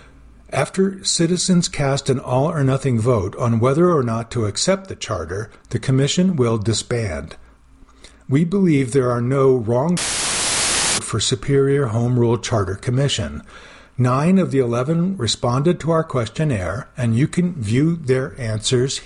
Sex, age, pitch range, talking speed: male, 50-69, 115-155 Hz, 140 wpm